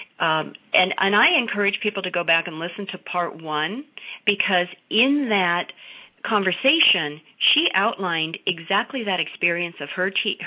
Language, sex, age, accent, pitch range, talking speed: English, female, 40-59, American, 150-205 Hz, 150 wpm